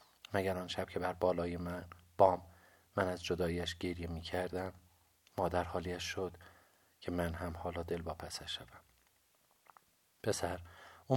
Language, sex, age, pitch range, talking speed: Persian, male, 50-69, 85-95 Hz, 140 wpm